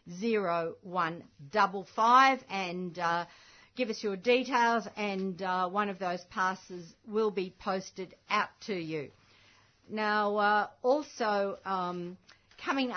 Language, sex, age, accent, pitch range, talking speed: English, female, 50-69, Australian, 185-225 Hz, 120 wpm